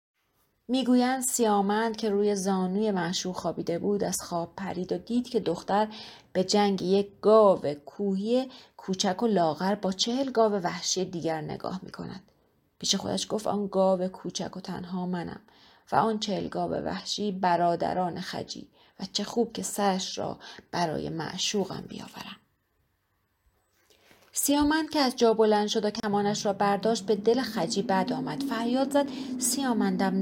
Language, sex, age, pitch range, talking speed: Persian, female, 30-49, 180-225 Hz, 145 wpm